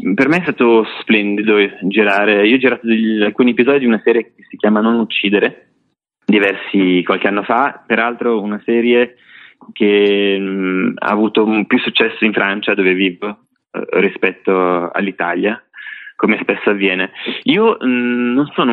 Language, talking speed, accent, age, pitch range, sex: Italian, 140 wpm, native, 20-39, 95-115 Hz, male